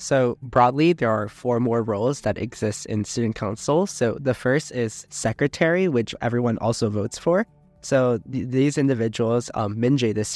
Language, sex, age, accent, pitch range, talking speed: English, male, 20-39, American, 110-130 Hz, 170 wpm